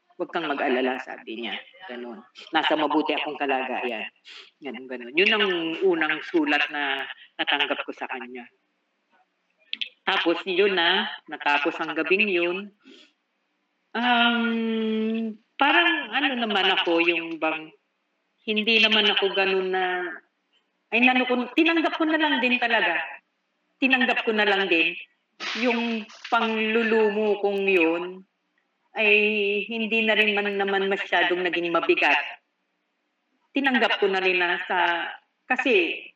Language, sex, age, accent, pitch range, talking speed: Filipino, female, 40-59, native, 155-220 Hz, 115 wpm